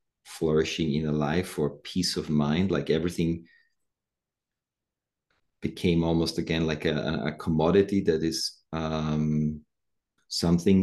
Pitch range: 75-90 Hz